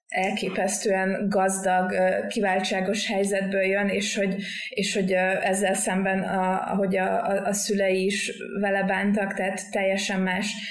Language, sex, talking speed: Hungarian, female, 125 wpm